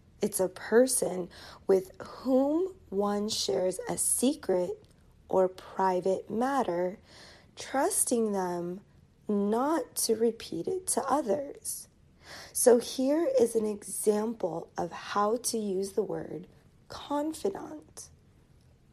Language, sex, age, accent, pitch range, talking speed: English, female, 30-49, American, 195-245 Hz, 100 wpm